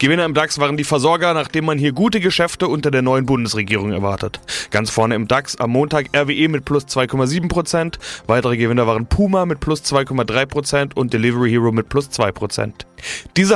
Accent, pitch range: German, 130-170 Hz